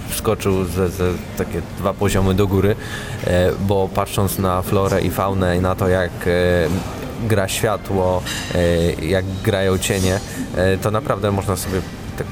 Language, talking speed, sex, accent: Polish, 135 wpm, male, native